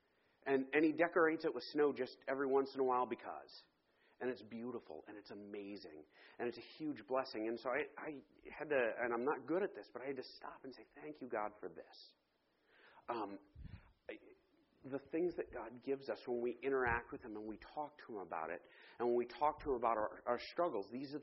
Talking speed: 225 wpm